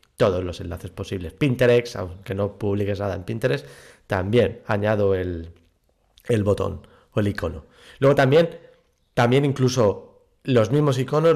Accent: Spanish